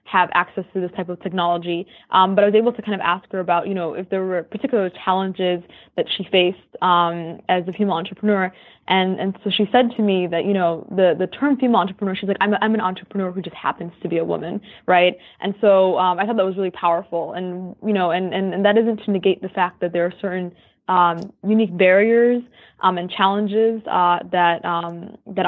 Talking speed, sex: 230 wpm, female